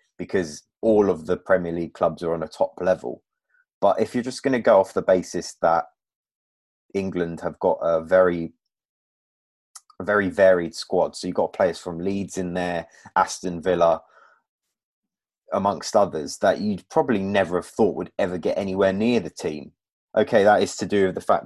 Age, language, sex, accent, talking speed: 30-49, English, male, British, 180 wpm